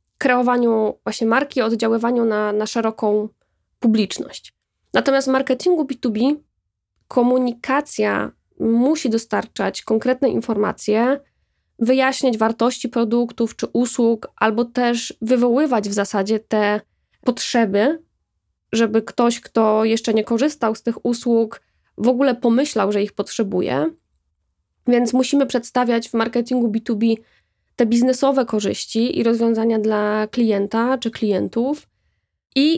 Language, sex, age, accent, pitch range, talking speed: Polish, female, 20-39, native, 225-265 Hz, 110 wpm